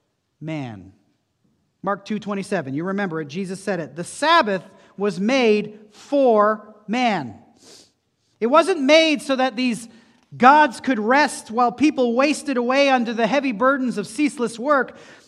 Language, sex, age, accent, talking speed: English, male, 40-59, American, 140 wpm